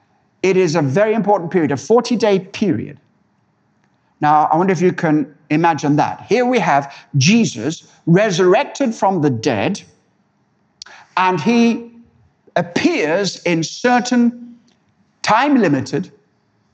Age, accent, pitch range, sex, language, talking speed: 60-79, British, 160-230 Hz, male, English, 110 wpm